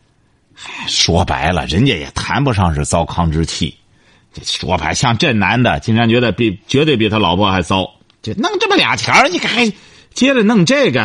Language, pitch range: Chinese, 80-115 Hz